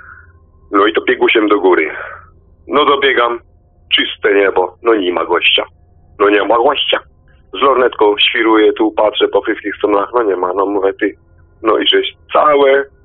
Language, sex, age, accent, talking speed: Polish, male, 40-59, native, 170 wpm